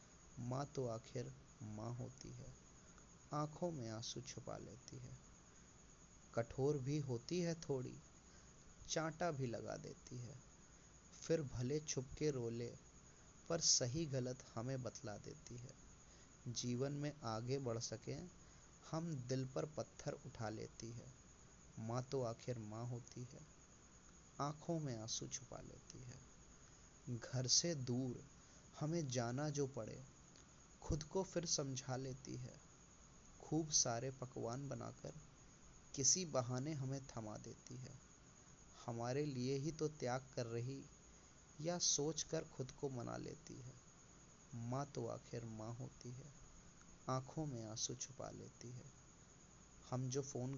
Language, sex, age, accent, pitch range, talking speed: Hindi, male, 20-39, native, 120-150 Hz, 130 wpm